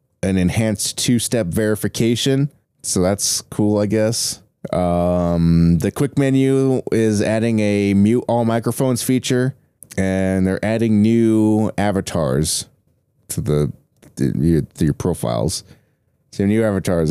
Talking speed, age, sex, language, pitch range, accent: 115 wpm, 20-39, male, English, 95-120 Hz, American